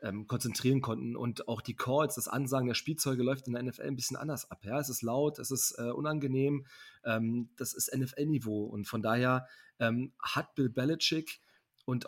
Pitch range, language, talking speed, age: 115-140 Hz, German, 190 wpm, 30-49